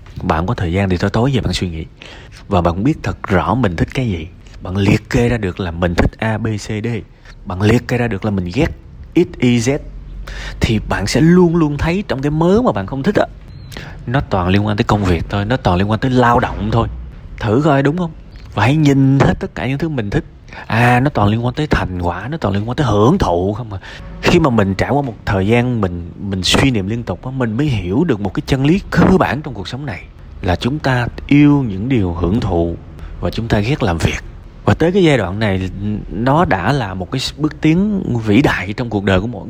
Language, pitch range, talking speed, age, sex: Vietnamese, 95-130 Hz, 255 wpm, 30-49, male